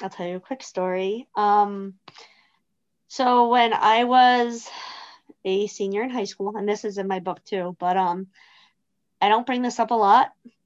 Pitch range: 190-215 Hz